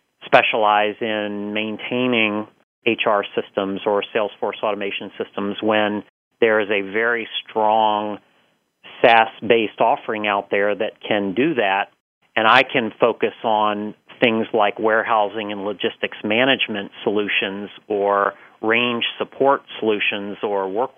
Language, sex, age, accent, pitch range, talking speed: English, male, 40-59, American, 105-115 Hz, 115 wpm